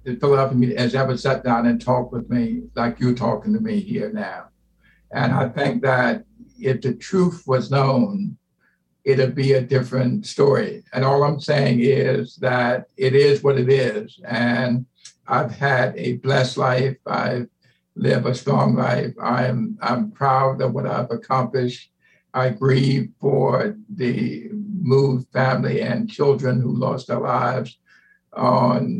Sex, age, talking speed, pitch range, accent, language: male, 60-79, 150 wpm, 125-140 Hz, American, English